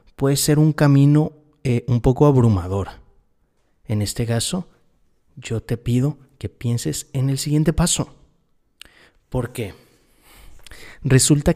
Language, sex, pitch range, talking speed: Spanish, male, 120-150 Hz, 120 wpm